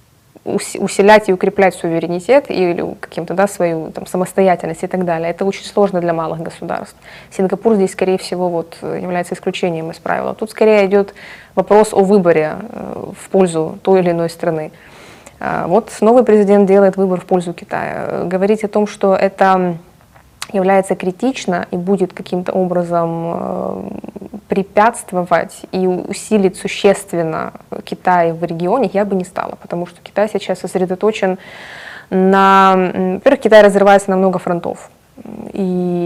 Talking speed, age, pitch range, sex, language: 135 wpm, 20-39, 180-200 Hz, female, Russian